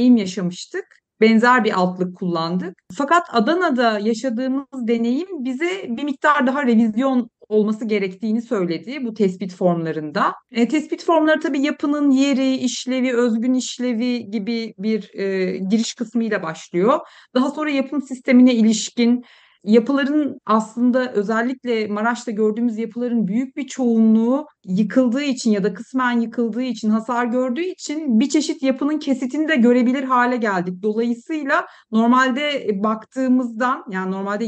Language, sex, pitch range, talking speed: Turkish, female, 210-265 Hz, 125 wpm